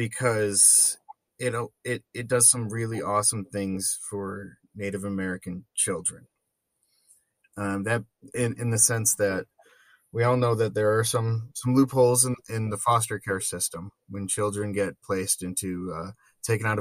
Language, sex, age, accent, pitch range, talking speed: English, male, 30-49, American, 95-110 Hz, 155 wpm